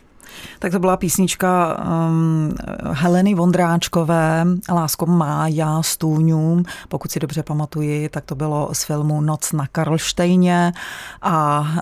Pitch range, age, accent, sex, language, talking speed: 160-185 Hz, 30-49, native, female, Czech, 115 wpm